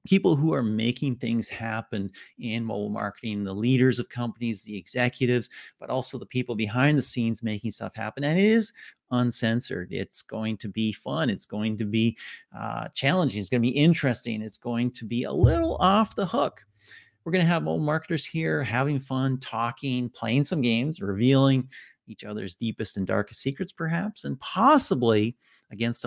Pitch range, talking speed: 110-135 Hz, 180 wpm